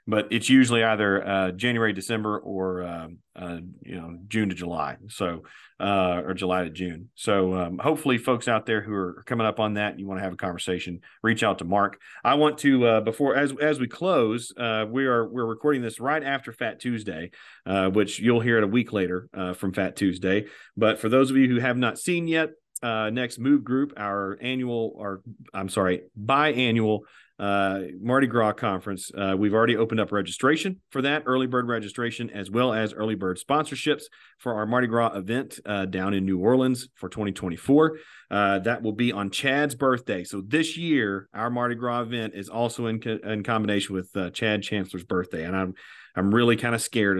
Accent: American